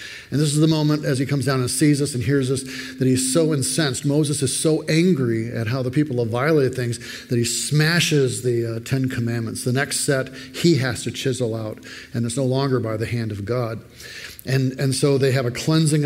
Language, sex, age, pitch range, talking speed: English, male, 50-69, 125-155 Hz, 230 wpm